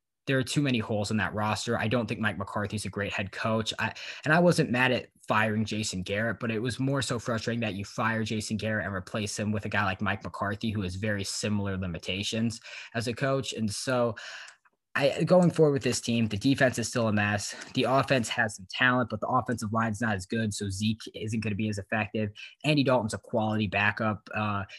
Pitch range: 105-125 Hz